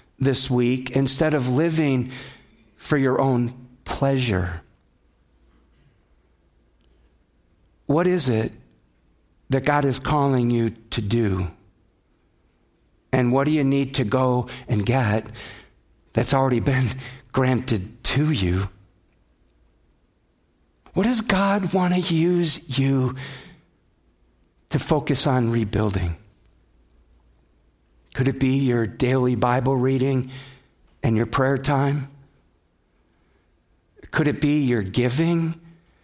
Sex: male